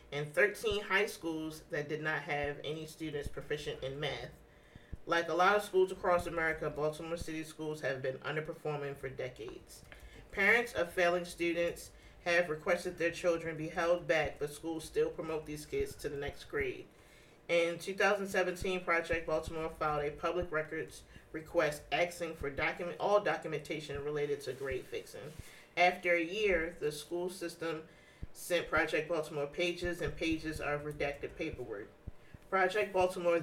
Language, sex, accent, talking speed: English, male, American, 150 wpm